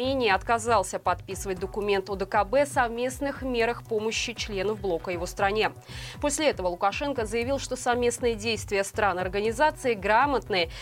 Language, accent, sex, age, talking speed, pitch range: Russian, native, female, 20-39, 120 wpm, 205-275 Hz